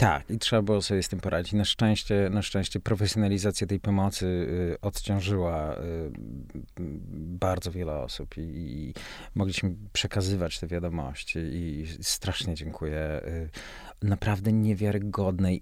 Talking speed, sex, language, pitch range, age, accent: 115 wpm, male, Polish, 80-100 Hz, 40-59, native